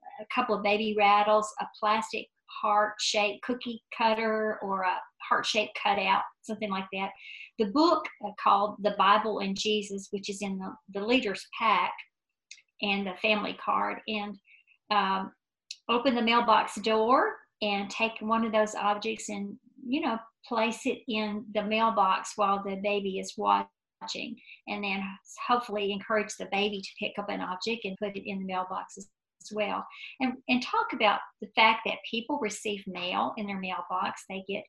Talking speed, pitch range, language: 165 wpm, 200-230 Hz, English